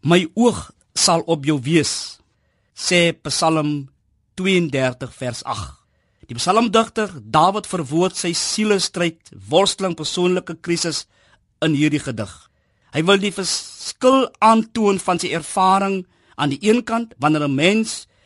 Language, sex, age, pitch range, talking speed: Dutch, male, 50-69, 150-215 Hz, 130 wpm